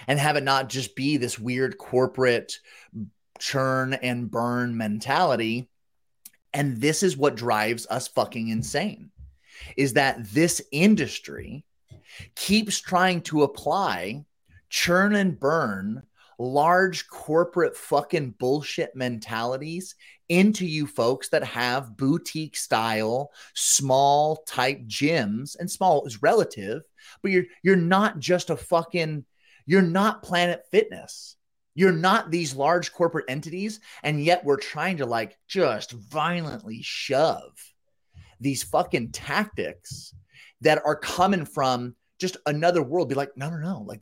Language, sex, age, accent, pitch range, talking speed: English, male, 30-49, American, 125-175 Hz, 125 wpm